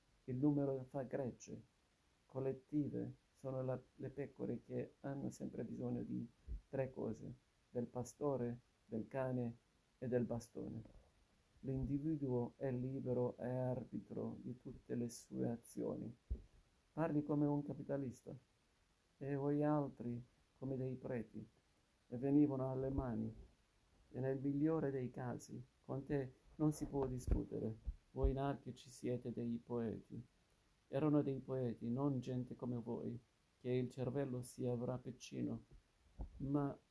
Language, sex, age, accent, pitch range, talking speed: Italian, male, 50-69, native, 110-135 Hz, 125 wpm